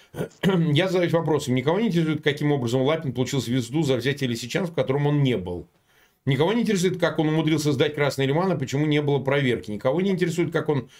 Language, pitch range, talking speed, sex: Russian, 125-175 Hz, 200 wpm, male